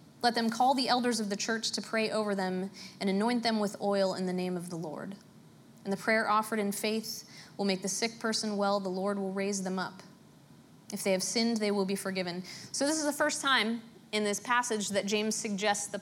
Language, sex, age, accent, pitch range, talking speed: English, female, 20-39, American, 190-230 Hz, 230 wpm